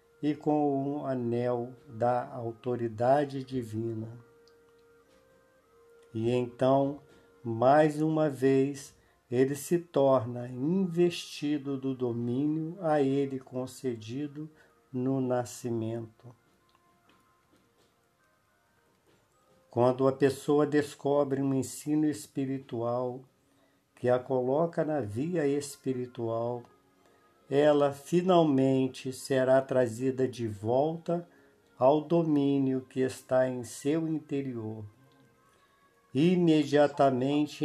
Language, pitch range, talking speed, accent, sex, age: Portuguese, 120-145 Hz, 80 wpm, Brazilian, male, 50-69